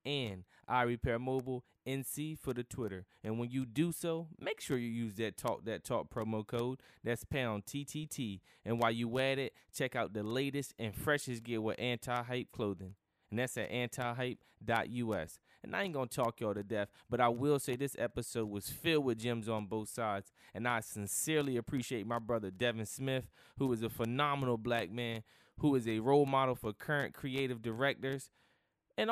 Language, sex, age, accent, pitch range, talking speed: English, male, 20-39, American, 115-145 Hz, 190 wpm